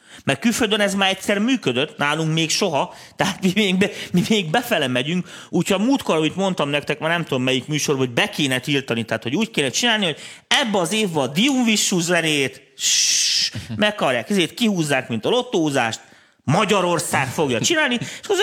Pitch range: 140-195 Hz